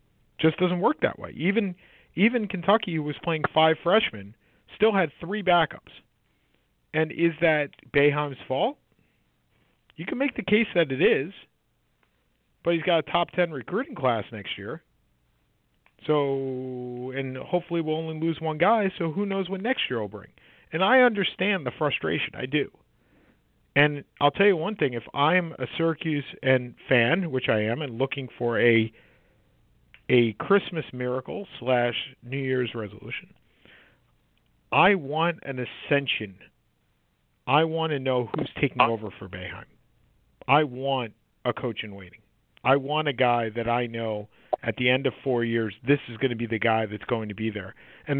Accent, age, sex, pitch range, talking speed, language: American, 40-59, male, 115-165 Hz, 165 wpm, English